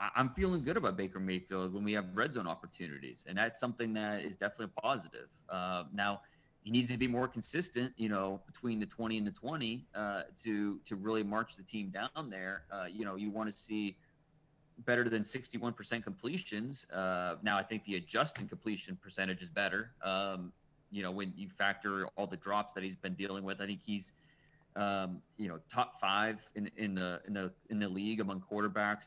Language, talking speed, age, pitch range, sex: English, 200 wpm, 30-49, 95-120 Hz, male